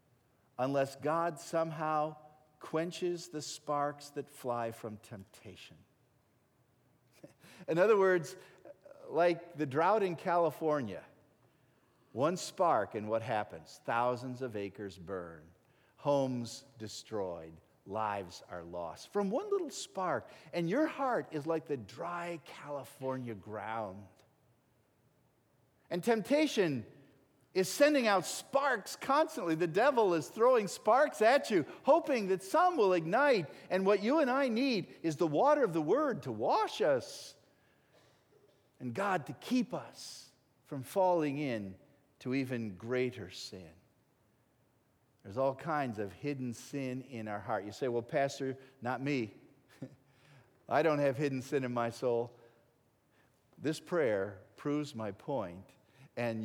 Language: English